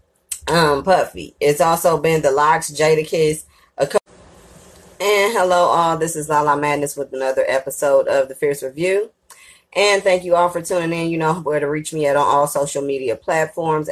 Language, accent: English, American